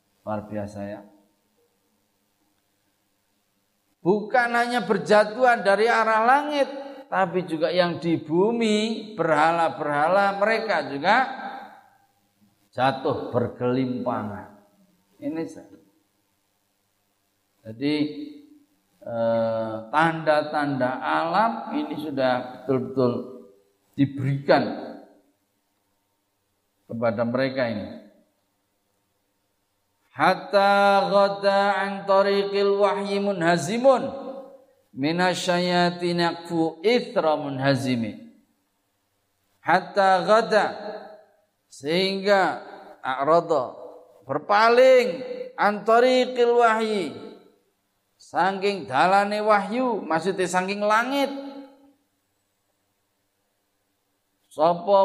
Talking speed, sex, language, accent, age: 60 wpm, male, Indonesian, native, 50-69